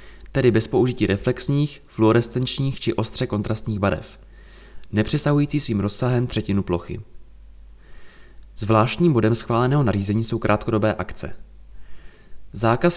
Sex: male